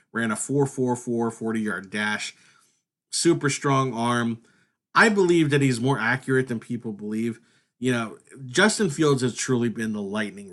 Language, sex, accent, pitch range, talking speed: English, male, American, 120-160 Hz, 150 wpm